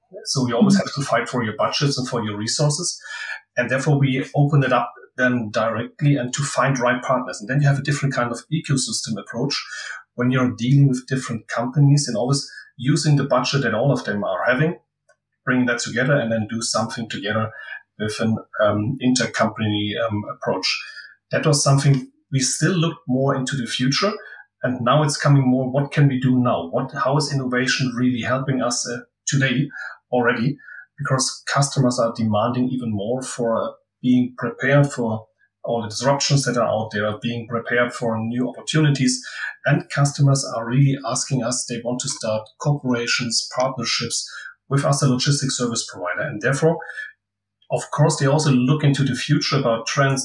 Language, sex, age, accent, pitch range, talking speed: German, male, 30-49, German, 120-140 Hz, 180 wpm